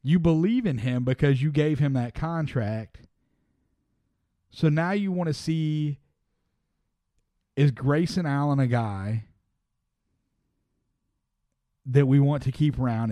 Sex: male